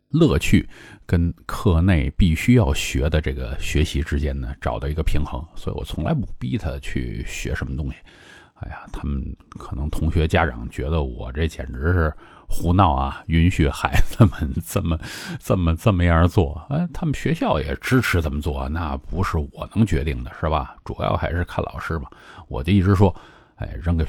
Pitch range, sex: 75-95 Hz, male